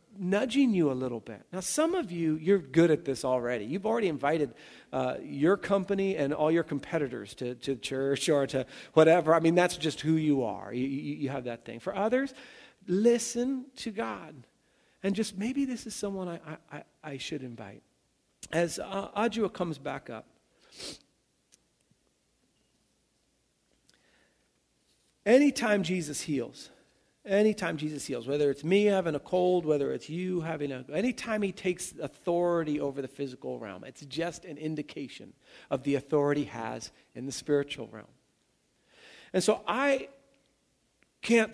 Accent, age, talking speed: American, 50-69, 155 wpm